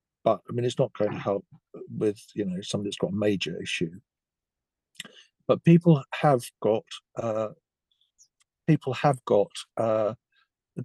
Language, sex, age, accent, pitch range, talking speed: English, male, 50-69, British, 110-135 Hz, 145 wpm